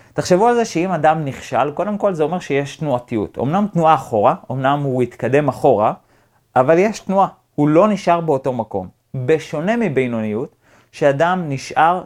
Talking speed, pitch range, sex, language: 155 wpm, 120-155 Hz, male, Hebrew